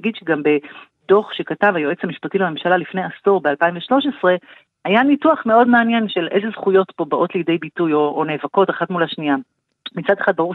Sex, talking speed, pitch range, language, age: female, 165 wpm, 160-215 Hz, Hebrew, 30-49